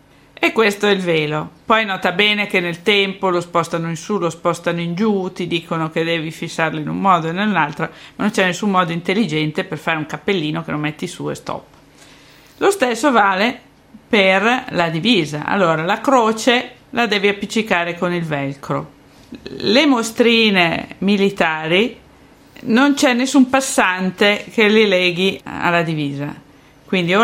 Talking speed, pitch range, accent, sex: 165 wpm, 170-215 Hz, native, female